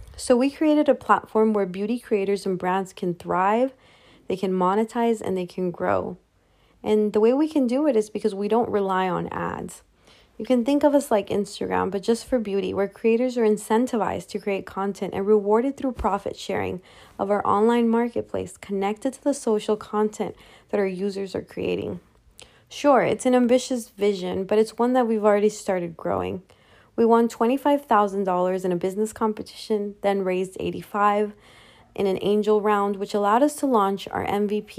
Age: 20-39